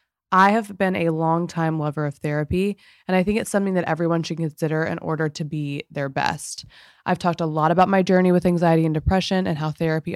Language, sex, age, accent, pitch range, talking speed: English, female, 20-39, American, 160-185 Hz, 220 wpm